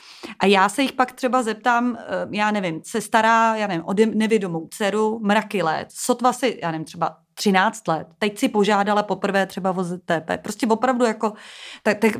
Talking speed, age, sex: 175 wpm, 30-49, female